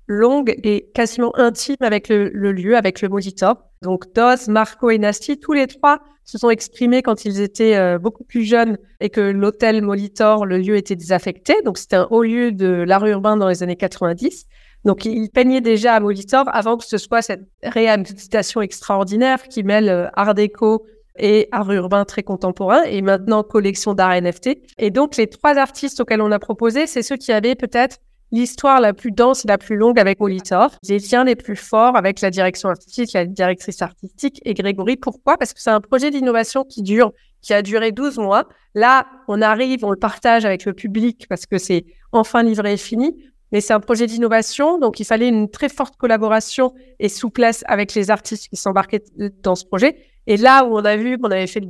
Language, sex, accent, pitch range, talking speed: French, female, French, 200-245 Hz, 205 wpm